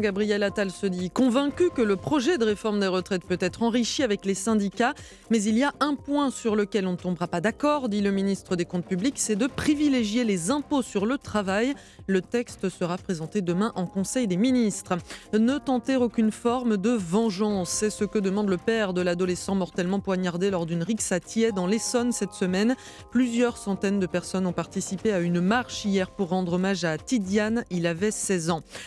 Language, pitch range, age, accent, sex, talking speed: French, 185-240 Hz, 20-39, French, female, 205 wpm